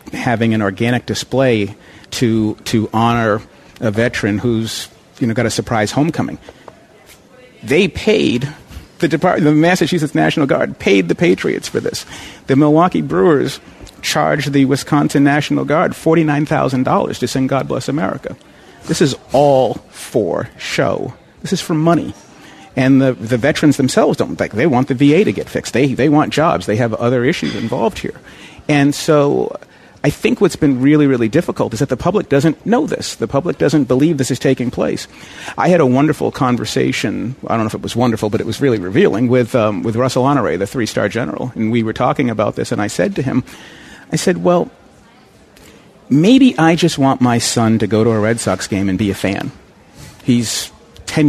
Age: 50-69